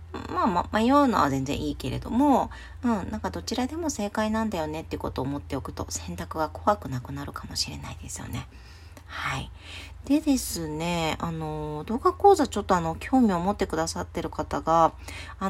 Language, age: Japanese, 40-59